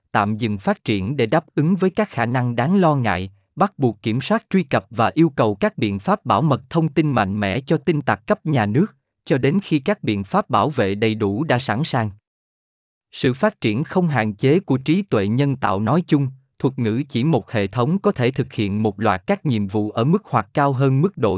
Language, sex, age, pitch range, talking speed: Vietnamese, male, 20-39, 110-155 Hz, 240 wpm